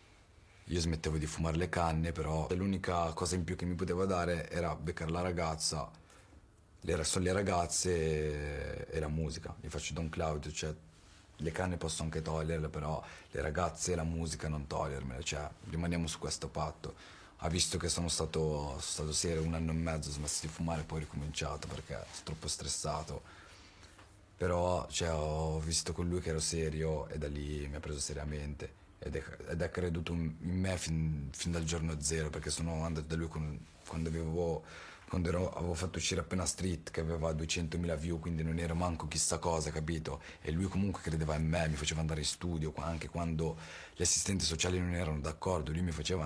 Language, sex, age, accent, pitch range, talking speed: Italian, male, 30-49, native, 80-85 Hz, 185 wpm